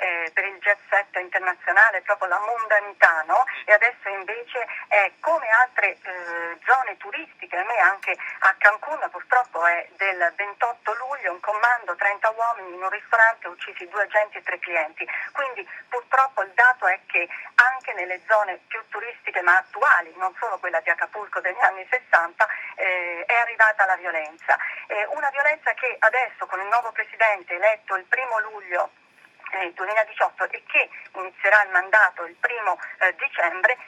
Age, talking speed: 40-59, 160 wpm